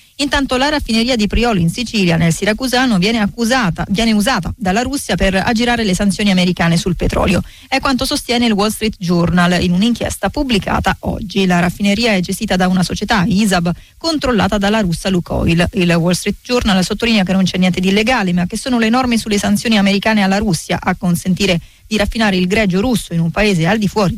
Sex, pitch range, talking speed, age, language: female, 180-220 Hz, 195 wpm, 30-49, Italian